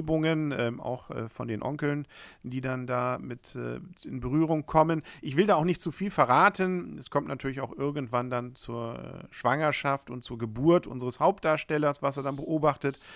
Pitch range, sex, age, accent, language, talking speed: 125-155 Hz, male, 40-59, German, German, 180 wpm